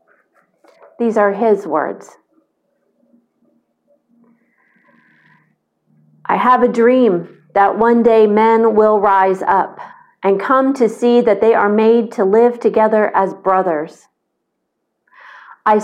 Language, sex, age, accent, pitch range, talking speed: English, female, 40-59, American, 195-235 Hz, 110 wpm